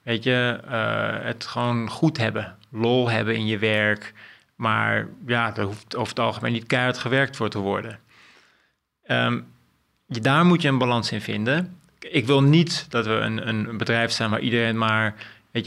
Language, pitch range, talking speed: Dutch, 110-140 Hz, 175 wpm